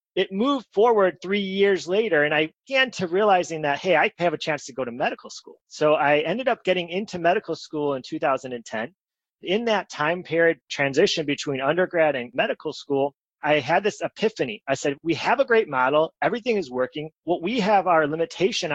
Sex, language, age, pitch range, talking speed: male, English, 30-49, 145-180 Hz, 195 wpm